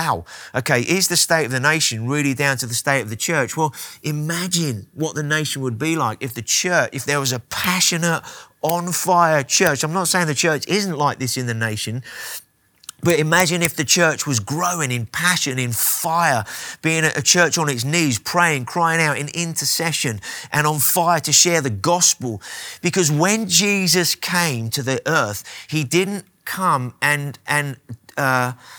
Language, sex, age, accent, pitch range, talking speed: English, male, 30-49, British, 140-175 Hz, 180 wpm